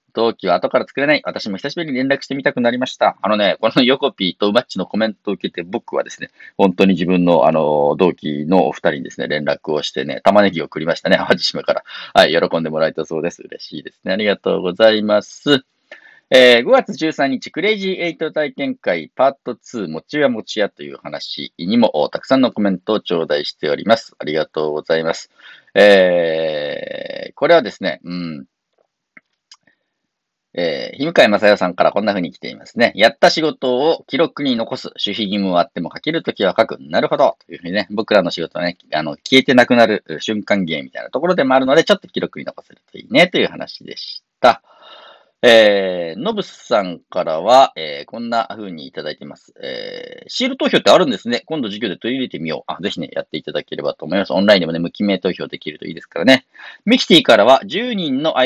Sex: male